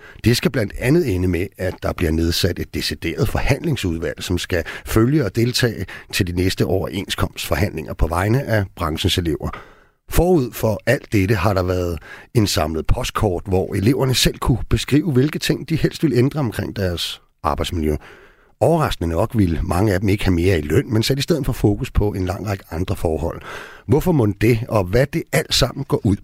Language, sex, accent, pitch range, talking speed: Danish, male, native, 95-130 Hz, 190 wpm